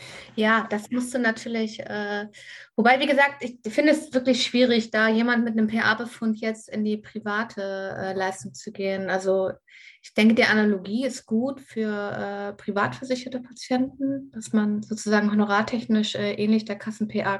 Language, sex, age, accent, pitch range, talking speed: German, female, 20-39, German, 195-225 Hz, 155 wpm